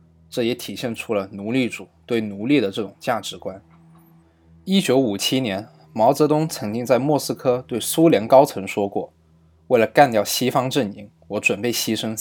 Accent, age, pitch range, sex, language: native, 20-39, 85-130 Hz, male, Chinese